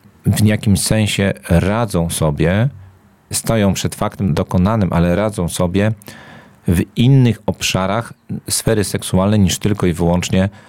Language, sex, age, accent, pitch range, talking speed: Polish, male, 40-59, native, 90-105 Hz, 120 wpm